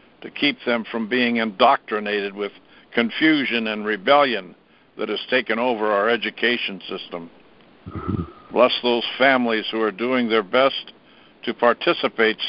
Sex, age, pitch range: male, 60-79, 105-125 Hz